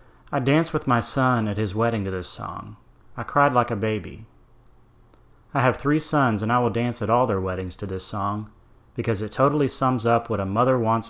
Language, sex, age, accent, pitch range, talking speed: English, male, 30-49, American, 105-125 Hz, 215 wpm